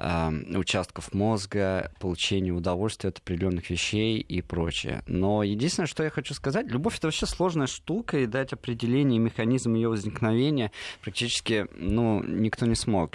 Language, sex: Russian, male